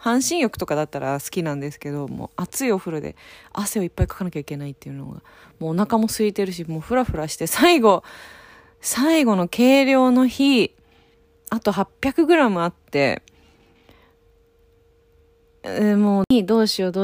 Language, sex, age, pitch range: Japanese, female, 20-39, 165-240 Hz